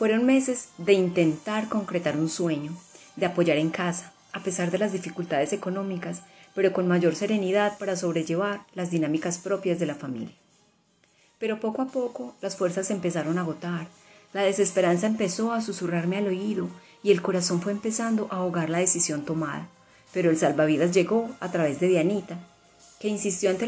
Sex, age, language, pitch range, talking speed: female, 30-49, Spanish, 170-205 Hz, 170 wpm